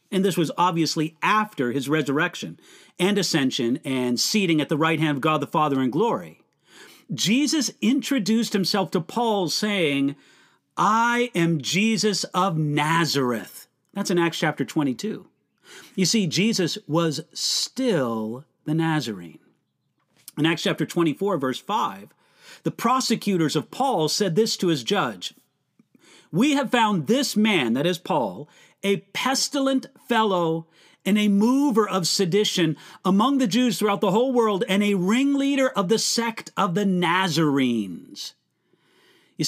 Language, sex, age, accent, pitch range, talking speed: English, male, 40-59, American, 155-215 Hz, 140 wpm